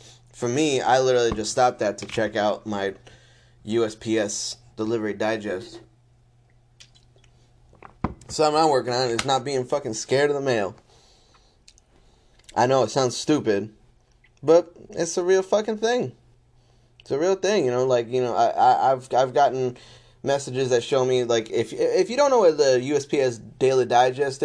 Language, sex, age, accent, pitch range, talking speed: English, male, 10-29, American, 115-135 Hz, 165 wpm